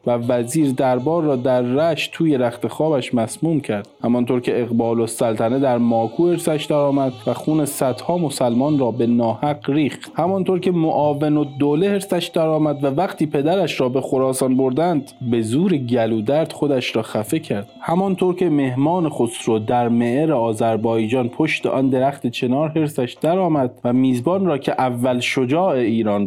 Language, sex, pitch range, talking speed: Persian, male, 115-155 Hz, 165 wpm